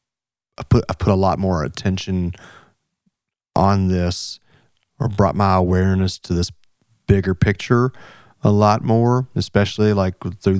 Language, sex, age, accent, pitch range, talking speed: English, male, 30-49, American, 95-110 Hz, 135 wpm